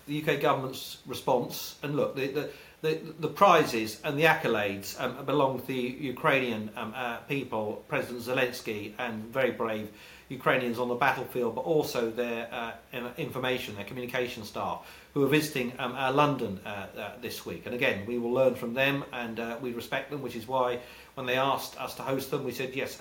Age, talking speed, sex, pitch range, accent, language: 40-59, 195 wpm, male, 120-145 Hz, British, English